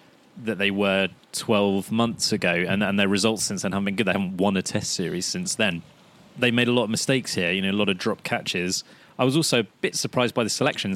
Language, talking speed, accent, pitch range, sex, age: English, 250 wpm, British, 100-120 Hz, male, 30-49